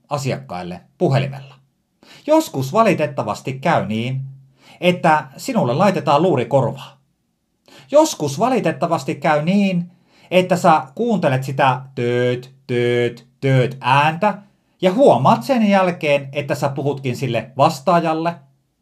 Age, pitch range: 30-49, 130-185 Hz